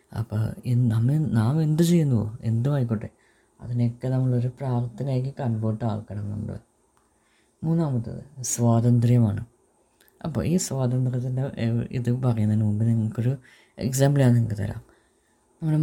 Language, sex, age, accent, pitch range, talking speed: Malayalam, female, 20-39, native, 115-130 Hz, 95 wpm